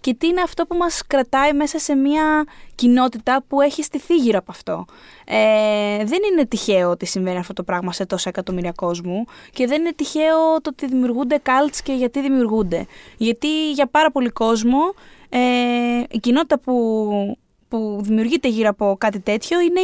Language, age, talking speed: Greek, 20-39, 170 wpm